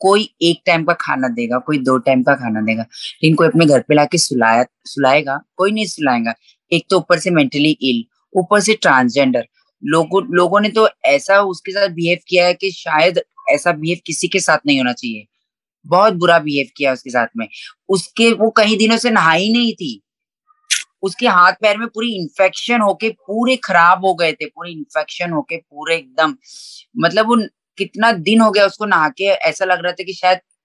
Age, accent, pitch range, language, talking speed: 20-39, native, 160-215 Hz, Hindi, 180 wpm